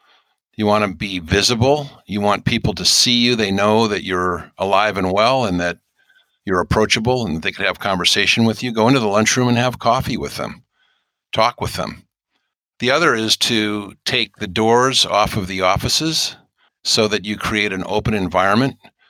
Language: English